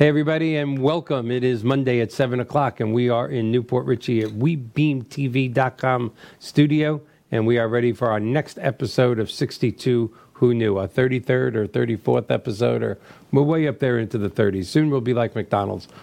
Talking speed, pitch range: 185 wpm, 110-130 Hz